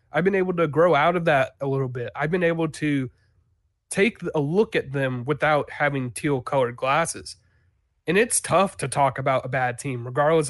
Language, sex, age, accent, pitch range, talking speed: English, male, 30-49, American, 130-165 Hz, 195 wpm